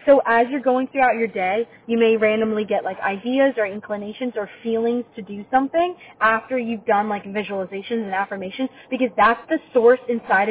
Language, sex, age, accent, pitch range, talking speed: English, female, 20-39, American, 230-295 Hz, 185 wpm